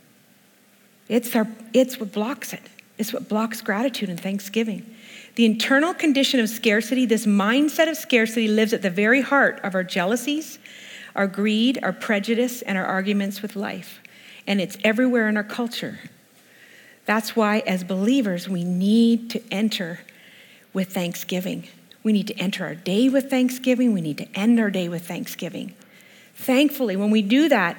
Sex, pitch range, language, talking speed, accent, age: female, 200-255 Hz, English, 160 wpm, American, 50-69